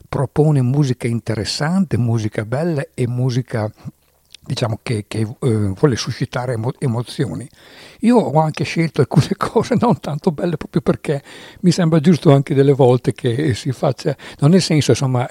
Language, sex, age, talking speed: English, male, 60-79, 145 wpm